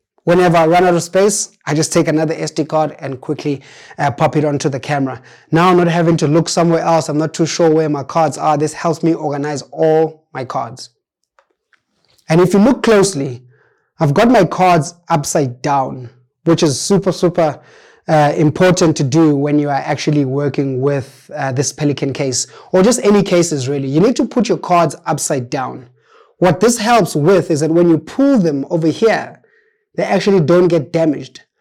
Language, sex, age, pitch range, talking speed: English, male, 20-39, 150-180 Hz, 195 wpm